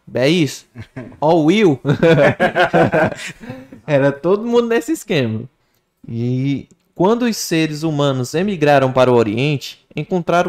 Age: 20-39